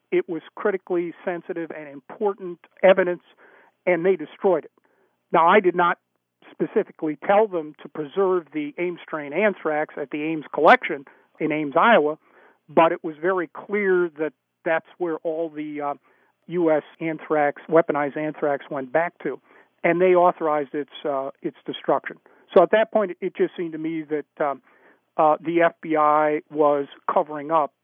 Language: English